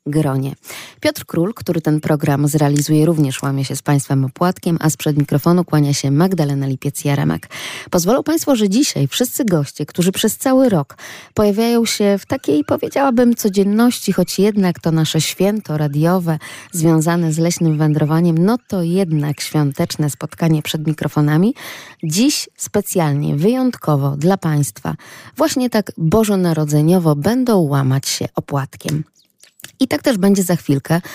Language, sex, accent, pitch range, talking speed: Polish, female, native, 145-190 Hz, 140 wpm